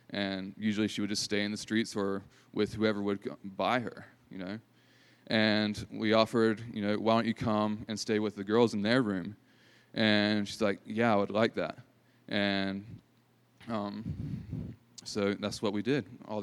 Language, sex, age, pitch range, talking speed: English, male, 20-39, 100-110 Hz, 185 wpm